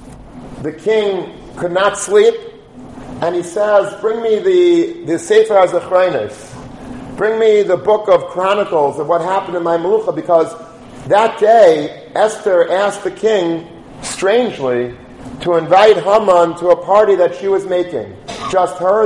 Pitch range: 165-205 Hz